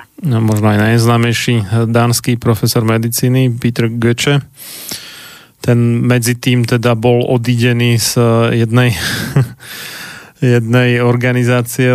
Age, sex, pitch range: 20-39, male, 115-125 Hz